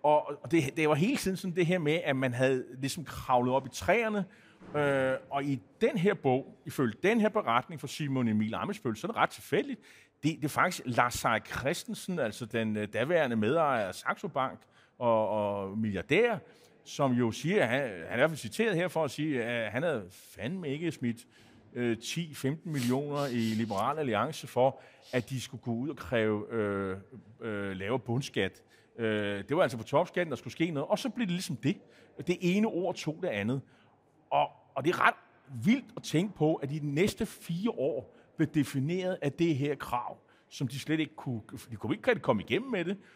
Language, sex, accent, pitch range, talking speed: Danish, male, native, 125-165 Hz, 195 wpm